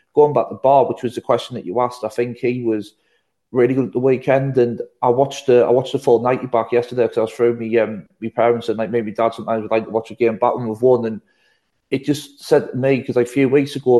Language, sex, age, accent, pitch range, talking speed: English, male, 30-49, British, 115-125 Hz, 290 wpm